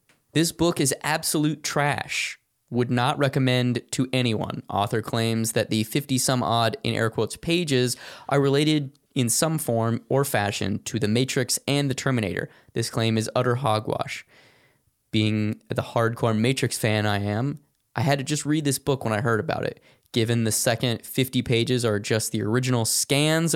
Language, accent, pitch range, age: English, American, 110-140 Hz, 20-39